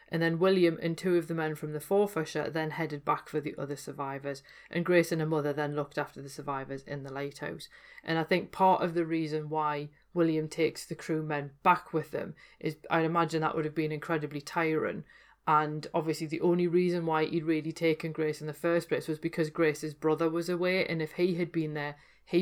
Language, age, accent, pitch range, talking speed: English, 30-49, British, 150-170 Hz, 220 wpm